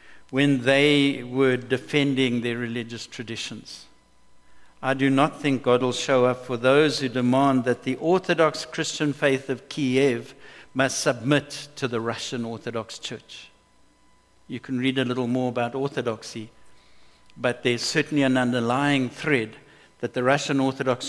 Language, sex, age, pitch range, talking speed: English, male, 60-79, 120-145 Hz, 145 wpm